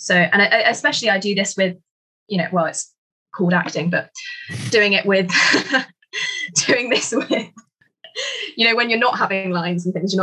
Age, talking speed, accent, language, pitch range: 20-39, 180 wpm, British, English, 175-200 Hz